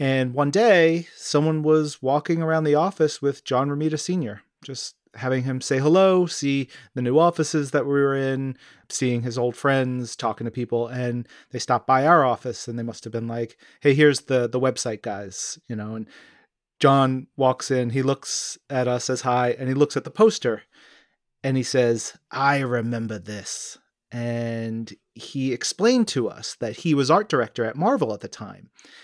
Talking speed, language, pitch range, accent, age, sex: 185 wpm, English, 125-150 Hz, American, 30-49, male